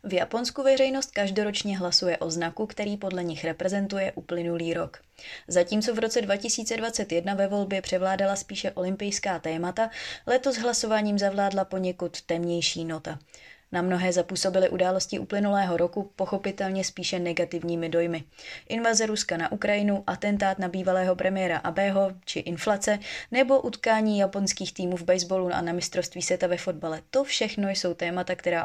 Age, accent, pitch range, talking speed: 20-39, native, 170-210 Hz, 140 wpm